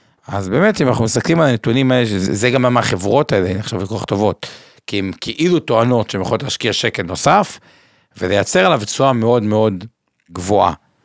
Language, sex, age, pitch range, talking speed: Hebrew, male, 50-69, 105-135 Hz, 175 wpm